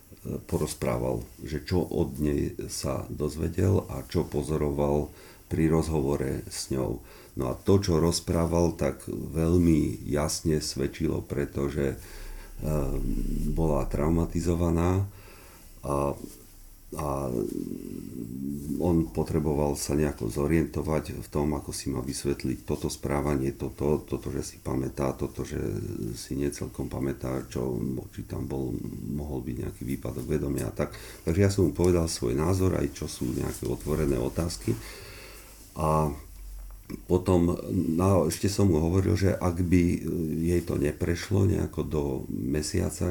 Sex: male